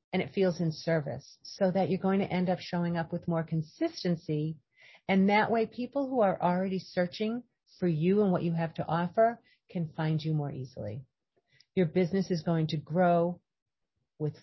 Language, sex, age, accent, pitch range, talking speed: English, female, 40-59, American, 160-210 Hz, 185 wpm